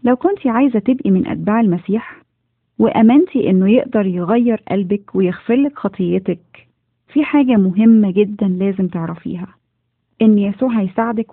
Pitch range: 180-235 Hz